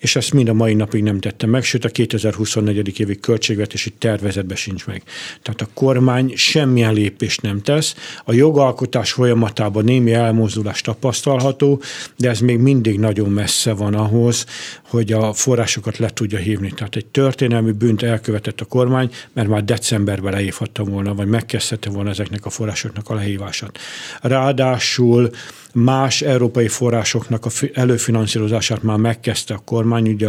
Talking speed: 150 wpm